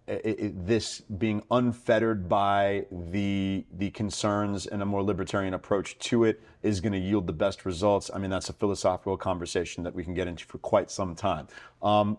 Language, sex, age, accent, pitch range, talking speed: English, male, 40-59, American, 100-115 Hz, 190 wpm